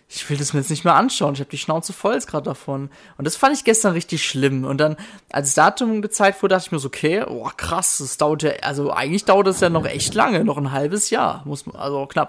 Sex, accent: male, German